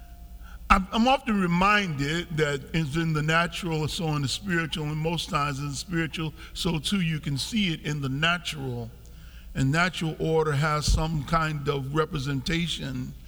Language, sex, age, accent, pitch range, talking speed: English, male, 50-69, American, 145-170 Hz, 165 wpm